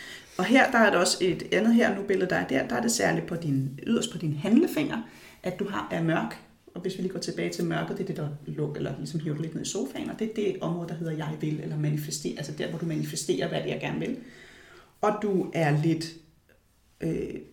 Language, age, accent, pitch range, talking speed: Danish, 30-49, native, 150-185 Hz, 260 wpm